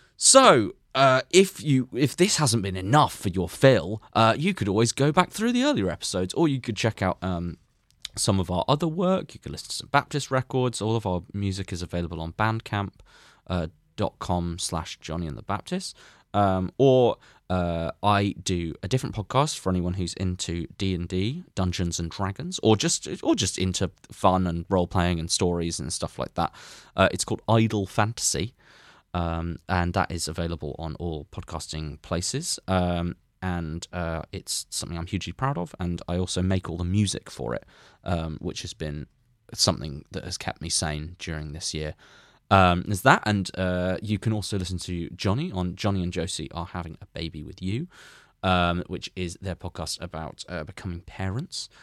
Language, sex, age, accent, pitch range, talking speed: English, male, 20-39, British, 85-115 Hz, 190 wpm